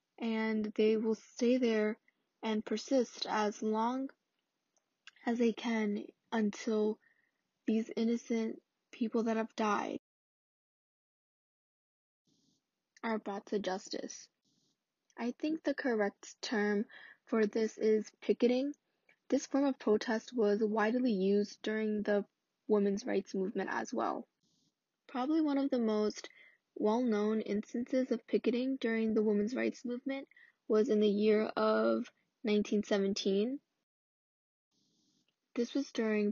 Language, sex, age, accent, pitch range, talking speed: English, female, 10-29, American, 210-240 Hz, 115 wpm